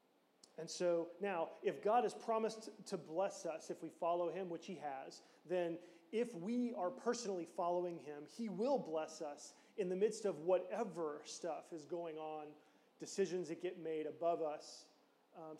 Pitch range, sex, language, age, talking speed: 160-200 Hz, male, English, 30-49, 170 wpm